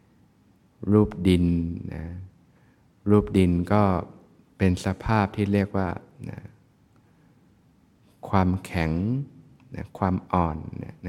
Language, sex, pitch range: Thai, male, 90-105 Hz